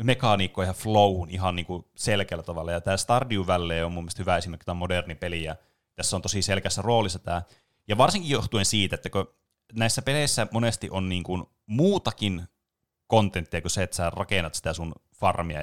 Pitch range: 90-105 Hz